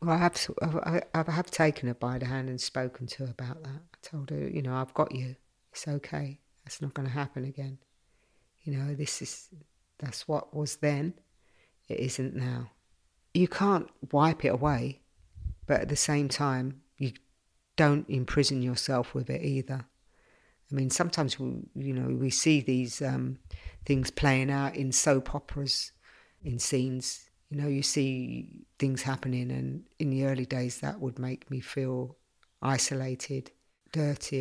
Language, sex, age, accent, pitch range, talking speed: English, female, 50-69, British, 125-145 Hz, 165 wpm